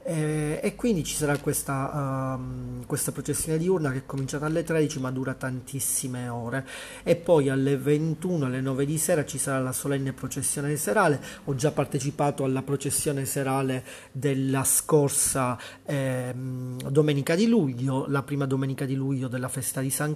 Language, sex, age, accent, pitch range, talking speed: Italian, male, 30-49, native, 130-150 Hz, 155 wpm